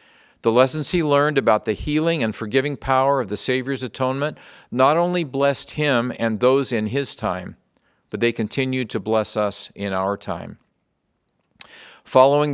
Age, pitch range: 50-69, 110-140 Hz